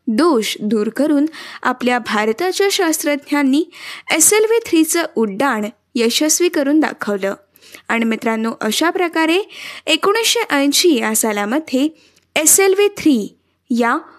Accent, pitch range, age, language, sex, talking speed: native, 240-335 Hz, 20-39, Marathi, female, 100 wpm